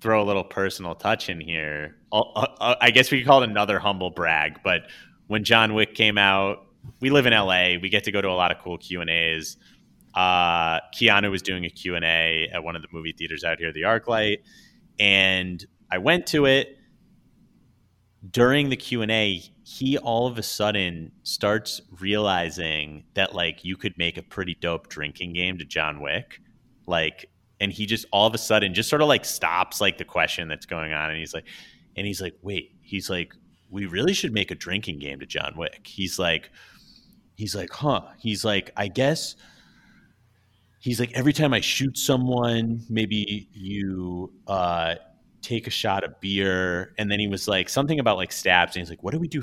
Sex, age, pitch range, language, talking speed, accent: male, 30-49, 85-115 Hz, English, 200 wpm, American